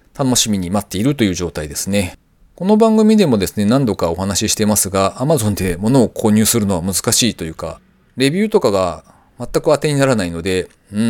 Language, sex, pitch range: Japanese, male, 95-140 Hz